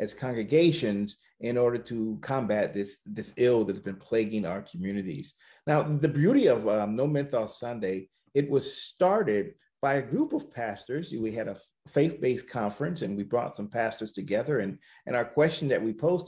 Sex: male